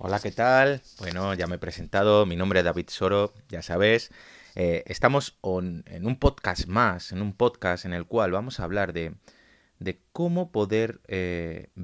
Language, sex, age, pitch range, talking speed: Spanish, male, 30-49, 90-110 Hz, 175 wpm